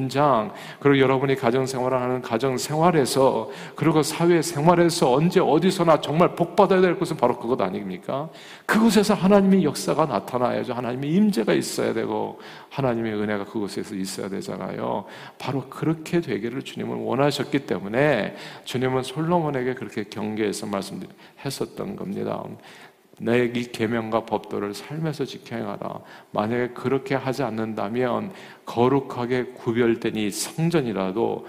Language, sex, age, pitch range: Korean, male, 40-59, 115-155 Hz